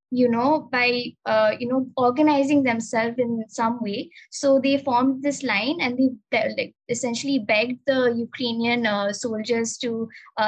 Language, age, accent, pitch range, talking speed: English, 20-39, Indian, 225-270 Hz, 150 wpm